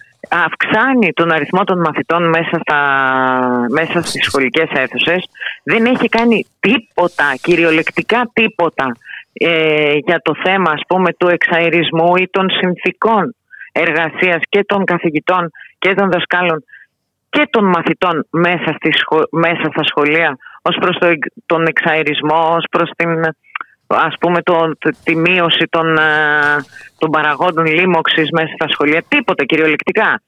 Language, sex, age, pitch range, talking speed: Greek, female, 30-49, 160-215 Hz, 120 wpm